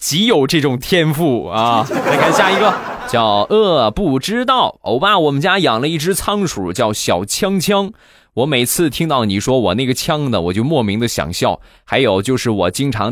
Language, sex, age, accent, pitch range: Chinese, male, 20-39, native, 105-145 Hz